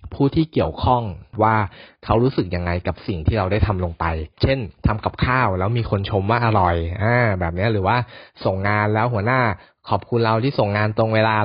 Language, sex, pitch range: Thai, male, 100-125 Hz